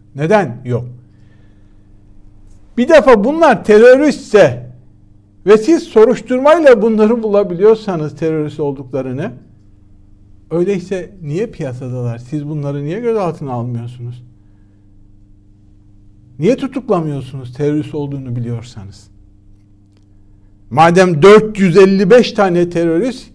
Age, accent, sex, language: 60-79, native, male, Turkish